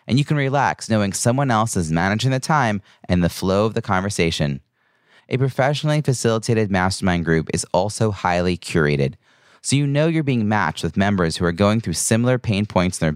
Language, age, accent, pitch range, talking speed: English, 30-49, American, 90-120 Hz, 195 wpm